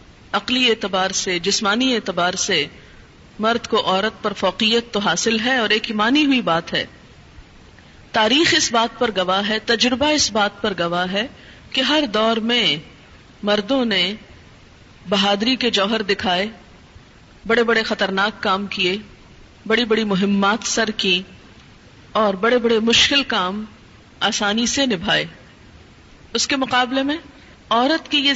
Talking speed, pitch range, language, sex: 140 wpm, 200-265 Hz, Urdu, female